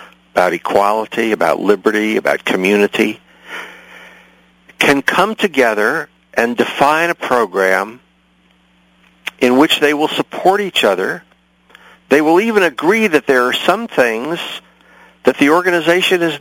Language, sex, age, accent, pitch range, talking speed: English, male, 60-79, American, 100-160 Hz, 120 wpm